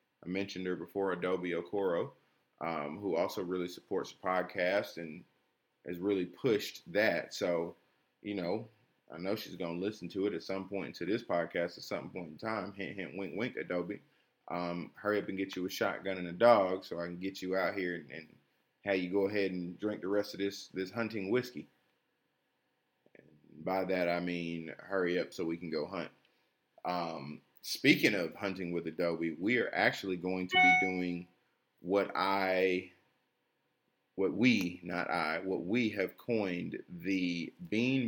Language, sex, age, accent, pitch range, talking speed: English, male, 20-39, American, 85-100 Hz, 180 wpm